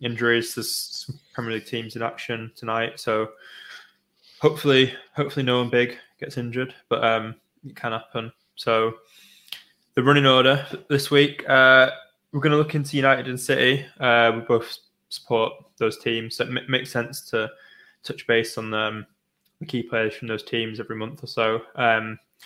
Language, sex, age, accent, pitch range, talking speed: English, male, 10-29, British, 115-135 Hz, 170 wpm